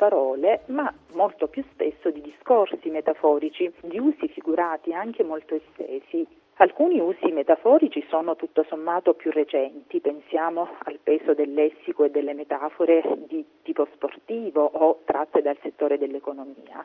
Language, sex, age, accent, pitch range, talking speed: Italian, female, 40-59, native, 150-180 Hz, 135 wpm